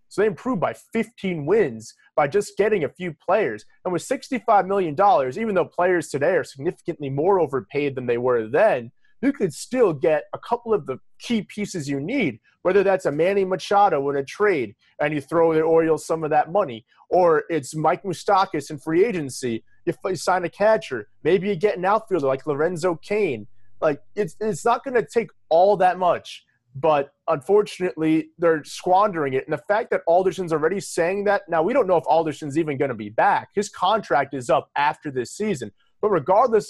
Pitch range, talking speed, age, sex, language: 150-200 Hz, 195 wpm, 30-49, male, English